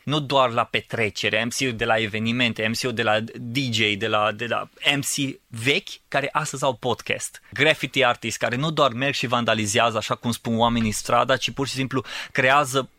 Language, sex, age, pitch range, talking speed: Romanian, male, 20-39, 115-140 Hz, 185 wpm